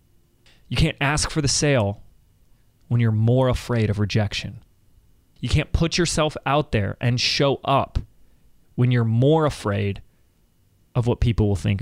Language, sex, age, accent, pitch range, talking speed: English, male, 30-49, American, 105-135 Hz, 150 wpm